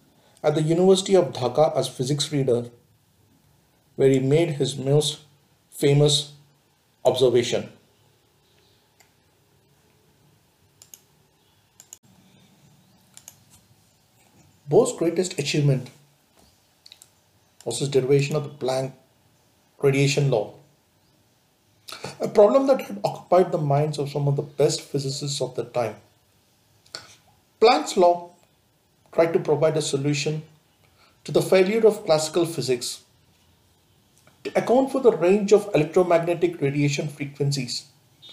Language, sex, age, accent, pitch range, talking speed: English, male, 50-69, Indian, 135-170 Hz, 100 wpm